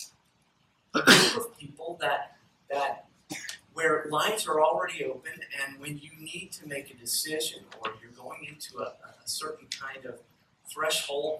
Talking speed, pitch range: 155 wpm, 130-175 Hz